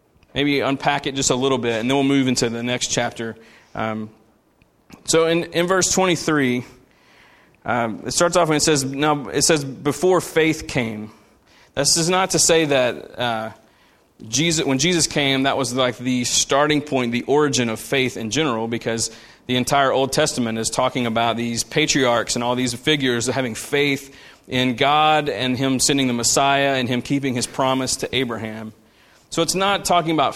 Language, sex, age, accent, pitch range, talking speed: English, male, 30-49, American, 120-145 Hz, 180 wpm